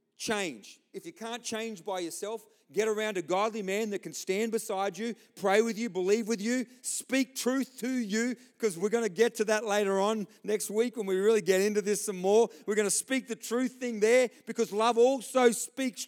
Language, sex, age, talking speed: English, male, 40-59, 215 wpm